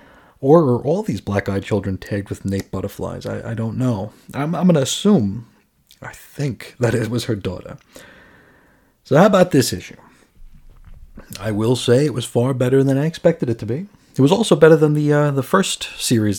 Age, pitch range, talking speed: 30-49, 105-145 Hz, 195 wpm